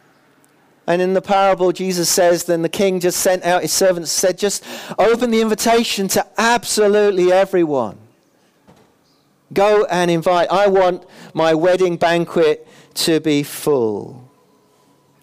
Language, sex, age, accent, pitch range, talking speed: English, male, 40-59, British, 170-210 Hz, 135 wpm